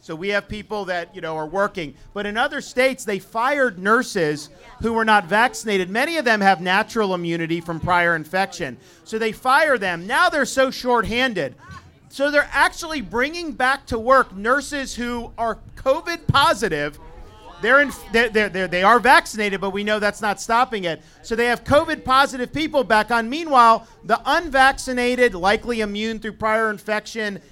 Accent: American